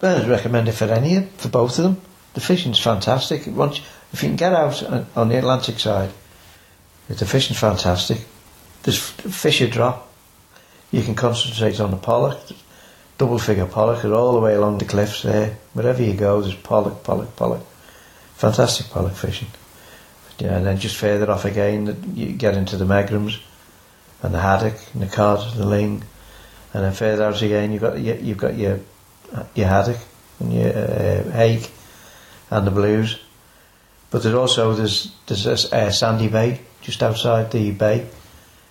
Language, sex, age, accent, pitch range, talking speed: English, male, 60-79, British, 100-115 Hz, 165 wpm